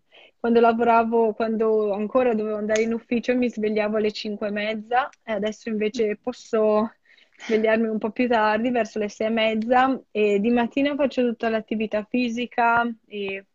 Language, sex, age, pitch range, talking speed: Italian, female, 20-39, 210-235 Hz, 160 wpm